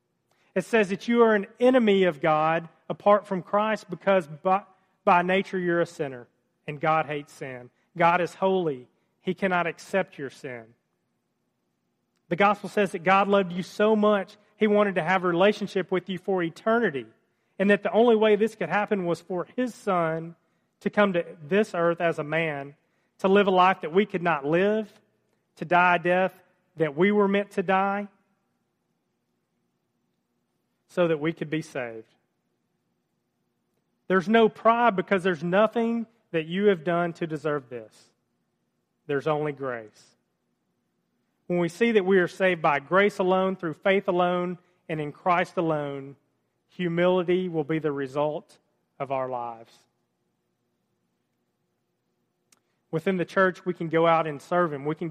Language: English